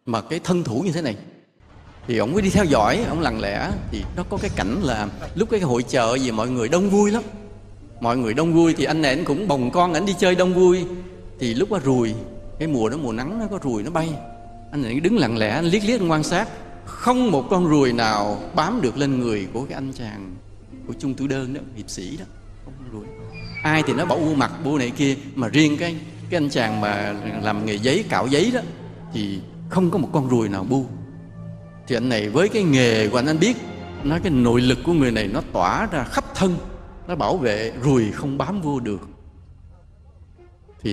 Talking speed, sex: 225 wpm, male